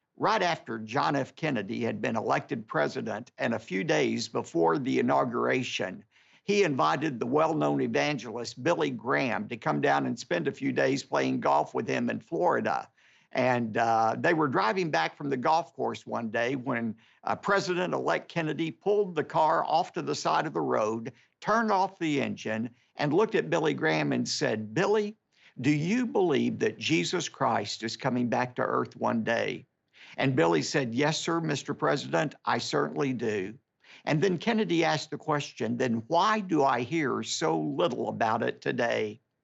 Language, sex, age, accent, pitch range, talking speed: English, male, 50-69, American, 120-185 Hz, 175 wpm